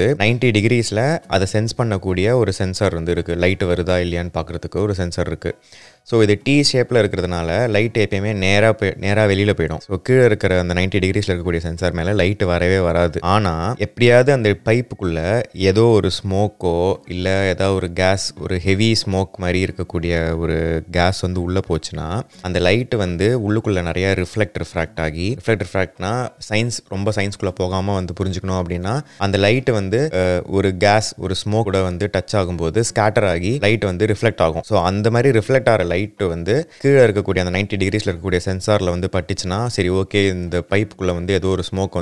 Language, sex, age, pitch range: Tamil, male, 20-39, 90-105 Hz